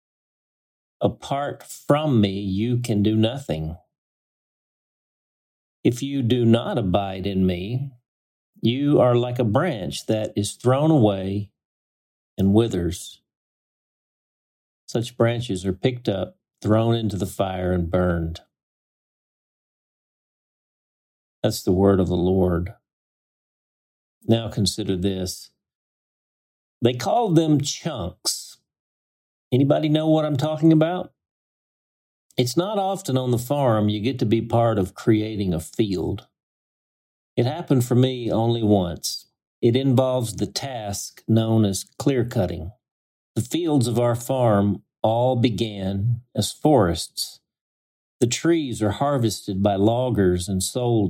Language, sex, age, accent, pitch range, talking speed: English, male, 50-69, American, 95-125 Hz, 115 wpm